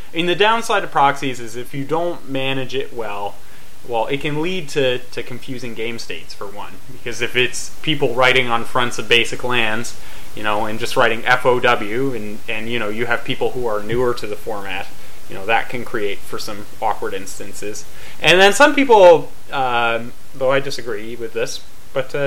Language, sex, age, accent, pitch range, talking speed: English, male, 30-49, American, 120-160 Hz, 195 wpm